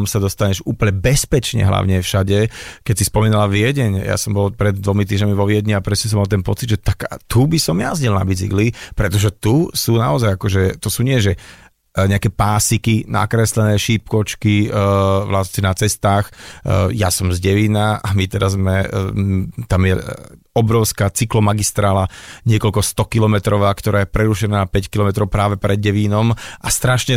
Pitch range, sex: 100-115 Hz, male